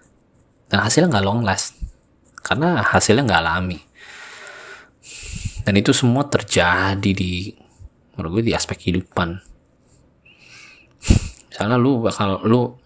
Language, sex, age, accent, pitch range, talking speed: Indonesian, male, 20-39, native, 95-115 Hz, 105 wpm